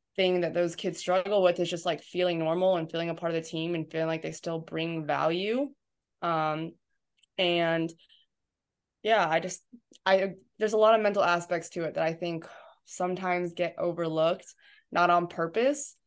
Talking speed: 180 wpm